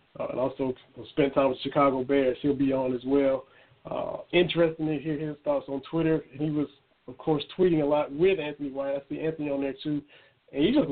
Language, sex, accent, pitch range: English, male, American, 140-155 Hz